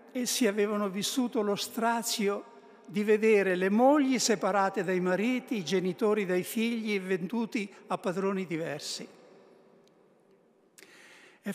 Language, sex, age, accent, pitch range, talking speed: Italian, male, 60-79, native, 165-215 Hz, 110 wpm